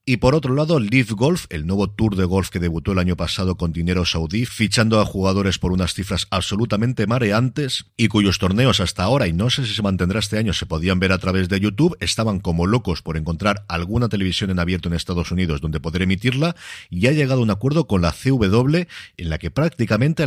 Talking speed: 220 wpm